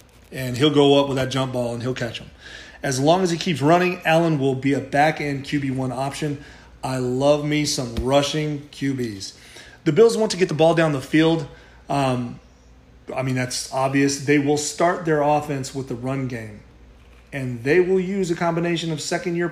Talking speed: 195 wpm